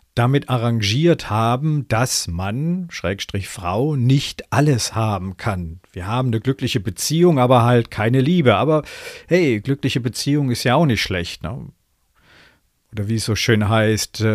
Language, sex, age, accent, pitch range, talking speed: German, male, 50-69, German, 100-130 Hz, 150 wpm